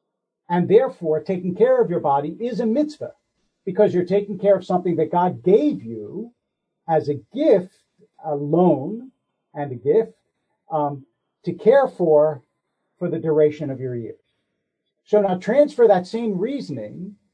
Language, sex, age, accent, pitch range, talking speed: English, male, 60-79, American, 155-210 Hz, 150 wpm